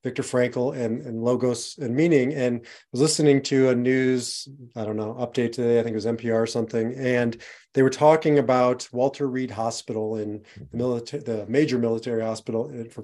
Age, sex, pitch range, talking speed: 30-49, male, 120-140 Hz, 195 wpm